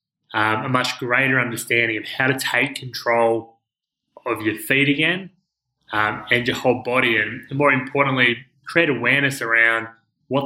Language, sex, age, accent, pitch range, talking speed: English, male, 20-39, Australian, 115-140 Hz, 150 wpm